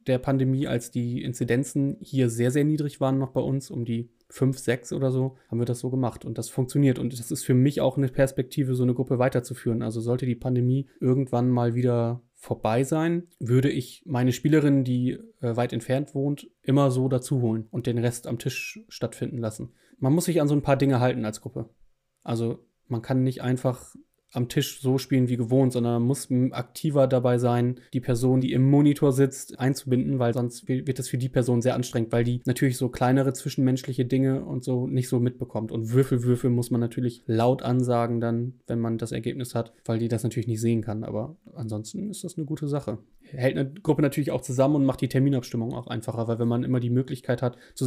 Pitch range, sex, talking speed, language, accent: 120-135 Hz, male, 215 wpm, German, German